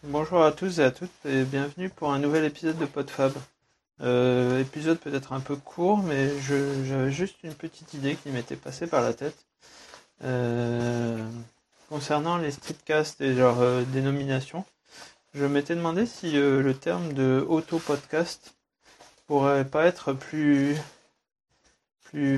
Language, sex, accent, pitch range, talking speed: French, male, French, 135-155 Hz, 145 wpm